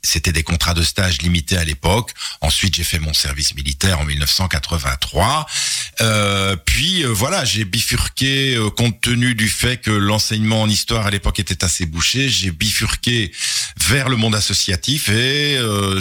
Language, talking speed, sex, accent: French, 165 wpm, male, French